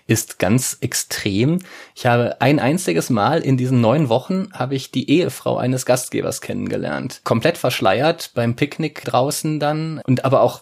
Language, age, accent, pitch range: German, 30-49, German, 115-145 Hz